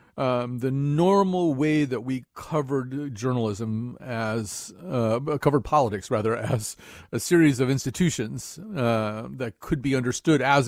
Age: 40-59